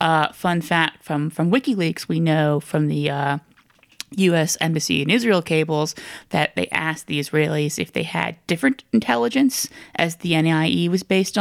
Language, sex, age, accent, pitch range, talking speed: English, female, 30-49, American, 165-205 Hz, 165 wpm